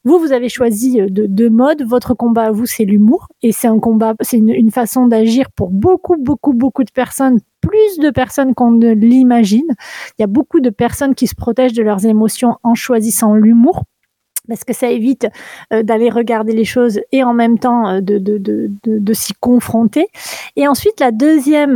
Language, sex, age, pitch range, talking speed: French, female, 30-49, 220-265 Hz, 200 wpm